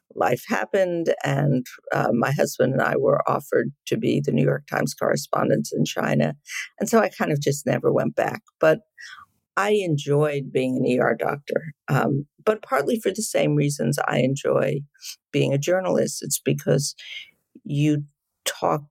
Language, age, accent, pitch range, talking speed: English, 50-69, American, 140-160 Hz, 160 wpm